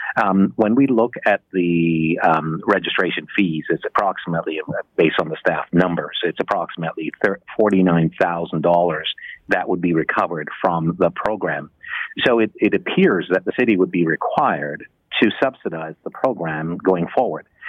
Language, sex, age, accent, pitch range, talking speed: English, male, 50-69, American, 85-100 Hz, 145 wpm